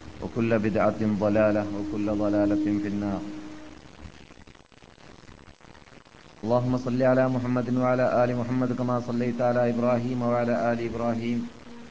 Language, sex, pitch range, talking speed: Malayalam, male, 110-120 Hz, 105 wpm